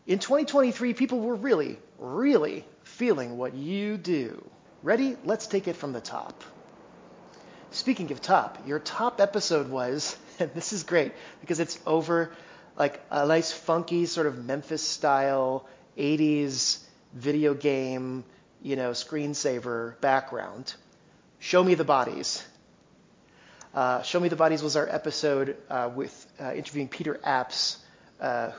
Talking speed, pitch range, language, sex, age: 135 wpm, 125-155 Hz, English, male, 30-49